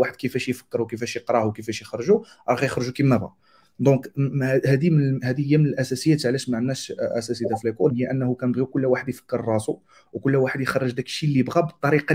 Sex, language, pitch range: male, Arabic, 115-135 Hz